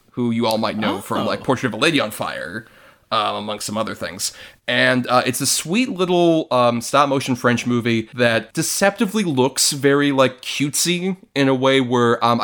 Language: English